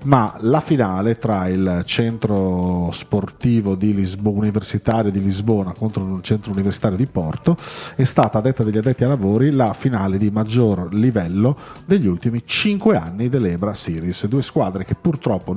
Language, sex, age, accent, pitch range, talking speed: Italian, male, 40-59, native, 95-130 Hz, 160 wpm